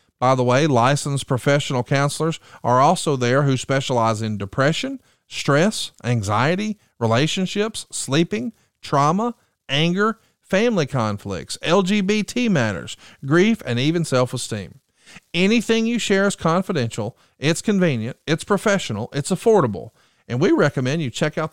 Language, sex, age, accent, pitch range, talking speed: English, male, 40-59, American, 120-175 Hz, 125 wpm